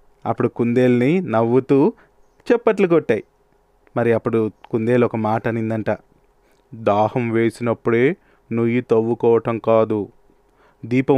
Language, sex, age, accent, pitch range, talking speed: Telugu, male, 30-49, native, 115-150 Hz, 90 wpm